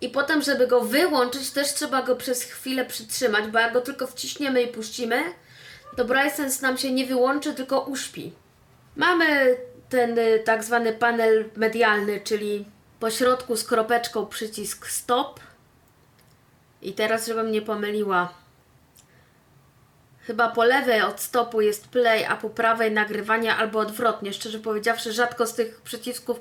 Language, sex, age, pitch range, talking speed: Polish, female, 20-39, 215-250 Hz, 145 wpm